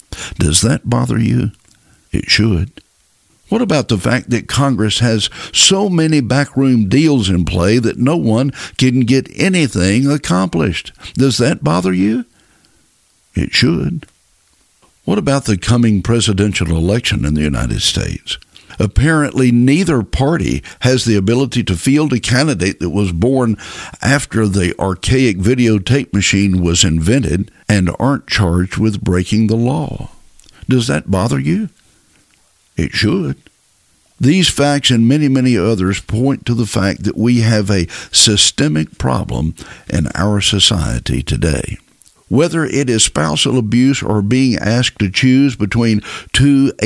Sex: male